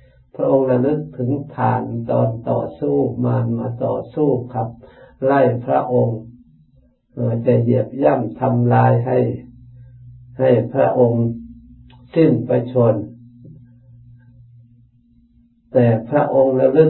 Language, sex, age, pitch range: Thai, male, 60-79, 115-130 Hz